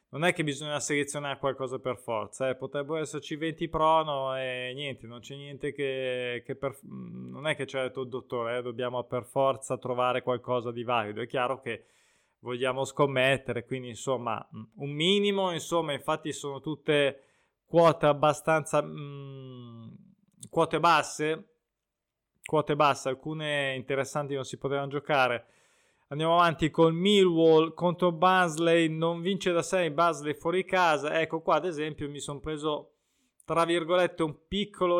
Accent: native